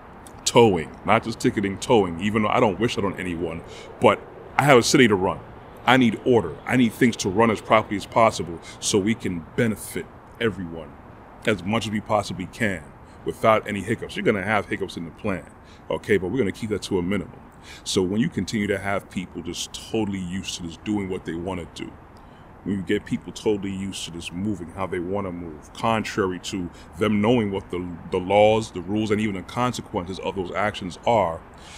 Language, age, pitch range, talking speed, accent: English, 30-49, 90-110 Hz, 210 wpm, American